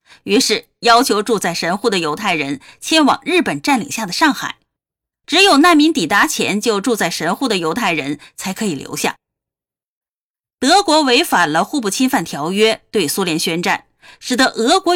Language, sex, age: Chinese, female, 30-49